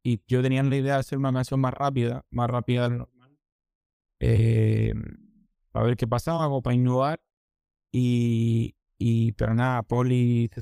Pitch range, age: 115-125 Hz, 20-39